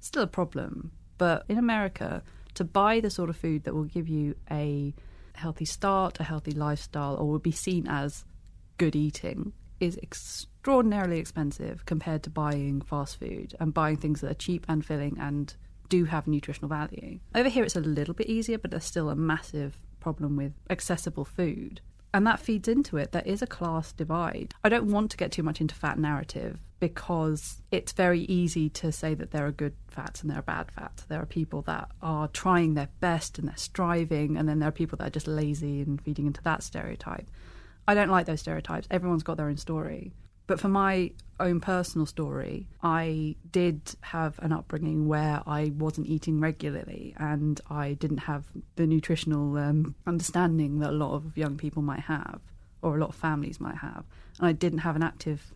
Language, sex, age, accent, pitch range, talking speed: English, female, 30-49, British, 150-175 Hz, 195 wpm